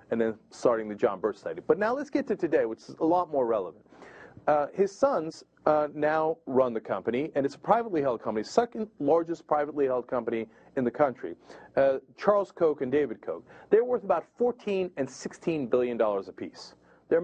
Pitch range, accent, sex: 120-180 Hz, American, male